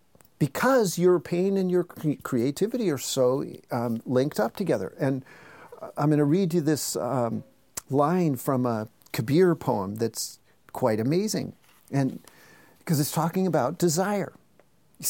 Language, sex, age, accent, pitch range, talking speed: English, male, 50-69, American, 140-180 Hz, 140 wpm